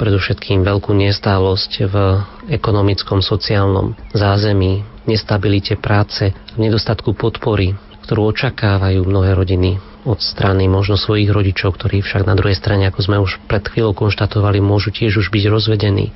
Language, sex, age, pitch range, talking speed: Slovak, male, 30-49, 100-110 Hz, 135 wpm